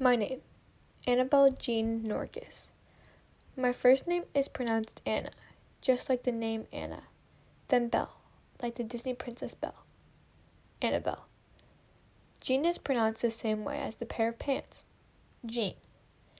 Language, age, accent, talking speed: English, 10-29, American, 130 wpm